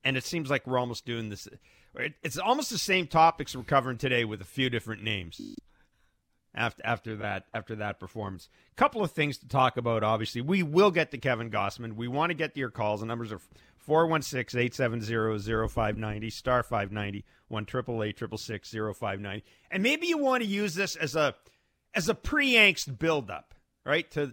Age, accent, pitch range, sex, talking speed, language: 40-59, American, 110-155 Hz, male, 195 wpm, English